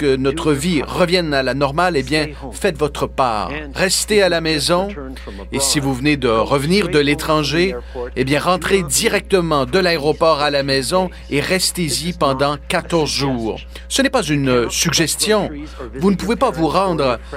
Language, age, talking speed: French, 40-59, 170 wpm